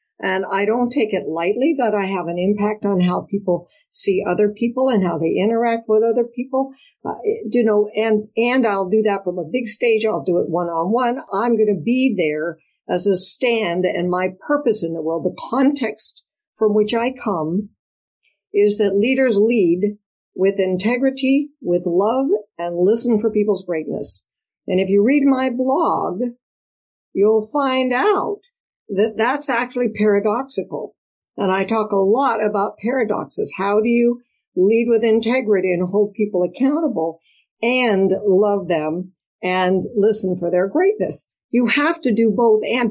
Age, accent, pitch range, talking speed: 60-79, American, 195-250 Hz, 165 wpm